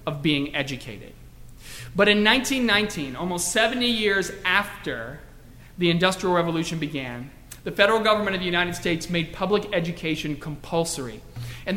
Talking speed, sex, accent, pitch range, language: 135 wpm, male, American, 160-210 Hz, English